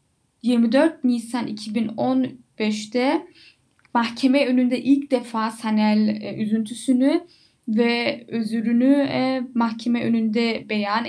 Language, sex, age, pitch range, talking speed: Turkish, female, 10-29, 230-275 Hz, 85 wpm